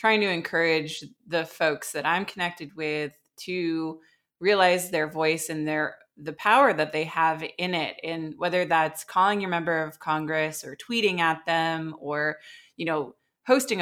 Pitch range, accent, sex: 155-180 Hz, American, female